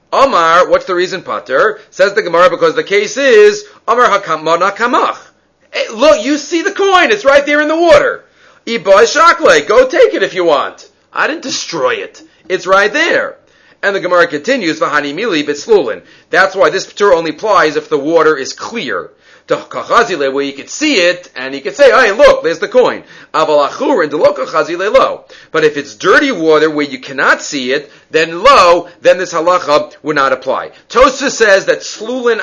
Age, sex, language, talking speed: 40-59, male, English, 175 wpm